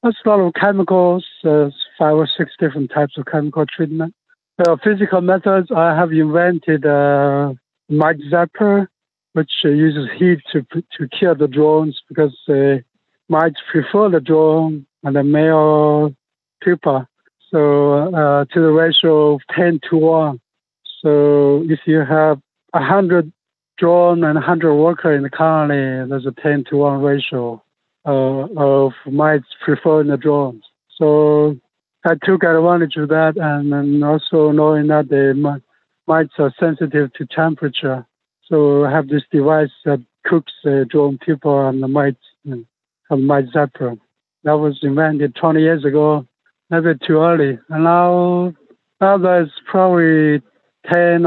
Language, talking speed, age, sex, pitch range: English, 150 wpm, 60-79, male, 145-165 Hz